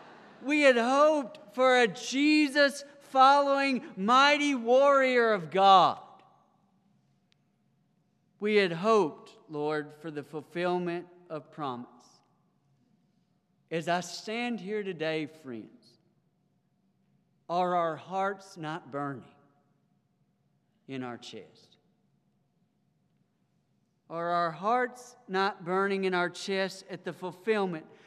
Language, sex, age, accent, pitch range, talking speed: English, male, 40-59, American, 165-220 Hz, 95 wpm